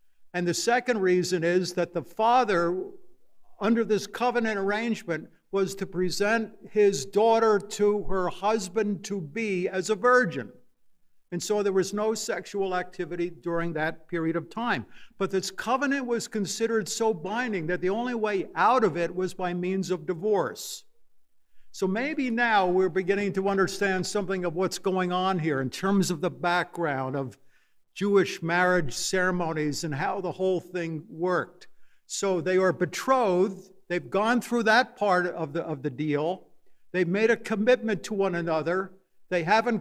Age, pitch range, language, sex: 60-79, 175-215 Hz, English, male